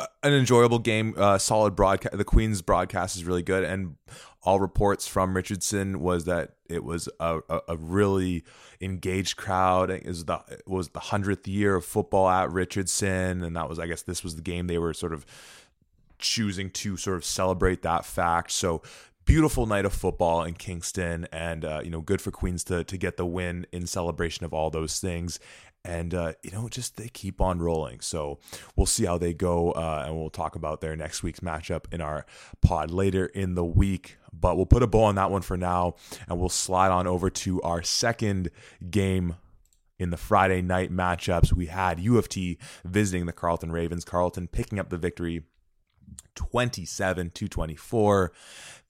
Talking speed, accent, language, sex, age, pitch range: 185 wpm, American, English, male, 20-39, 85-95 Hz